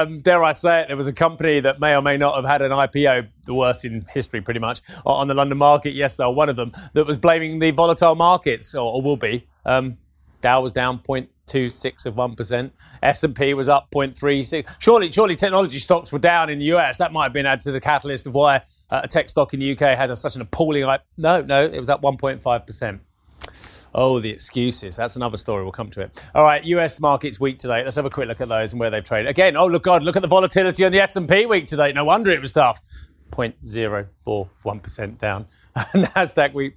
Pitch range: 120-165 Hz